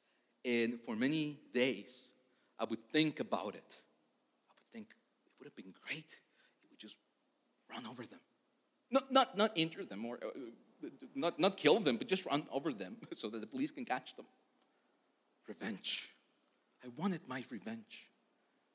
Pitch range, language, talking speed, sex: 150-205 Hz, English, 165 wpm, male